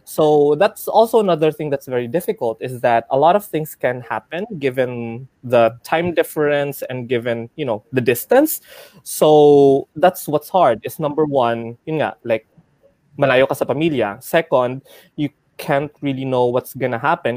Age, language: 20-39, English